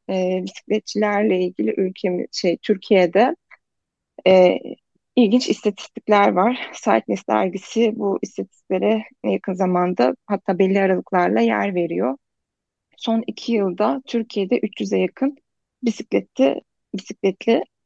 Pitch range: 180-220 Hz